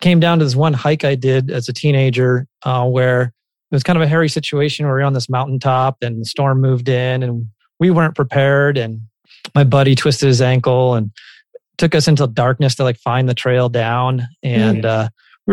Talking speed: 210 wpm